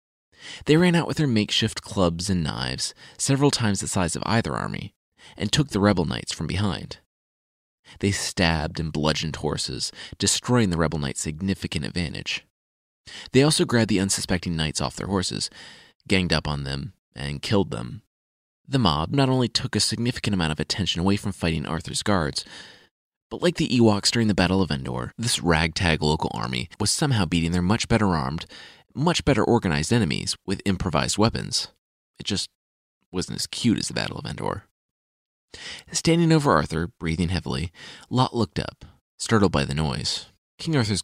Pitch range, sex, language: 80-115 Hz, male, English